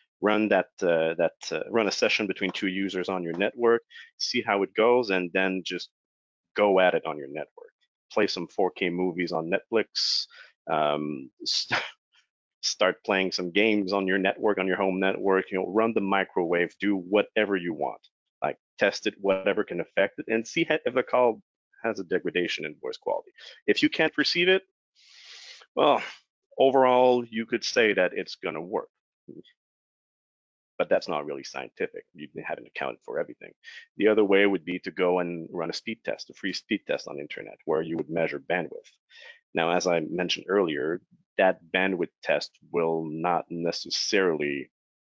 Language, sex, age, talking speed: English, male, 30-49, 180 wpm